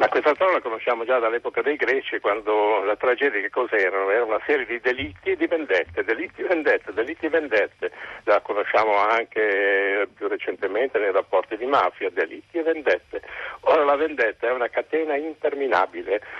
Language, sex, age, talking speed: Italian, male, 60-79, 170 wpm